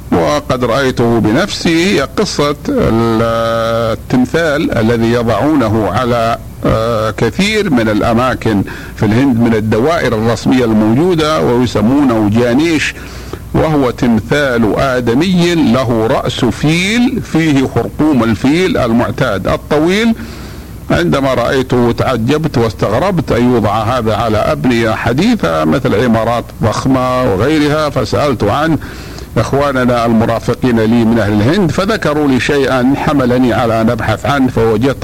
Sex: male